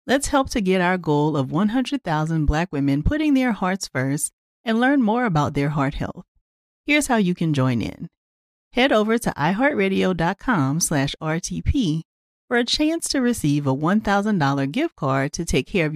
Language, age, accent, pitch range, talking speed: English, 40-59, American, 150-215 Hz, 170 wpm